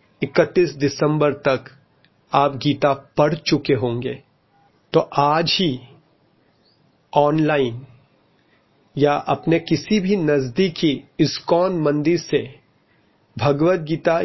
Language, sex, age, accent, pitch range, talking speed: Hindi, male, 30-49, native, 135-155 Hz, 90 wpm